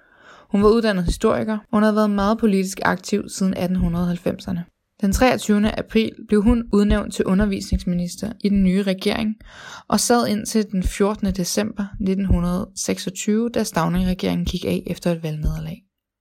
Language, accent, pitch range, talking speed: Danish, native, 185-215 Hz, 145 wpm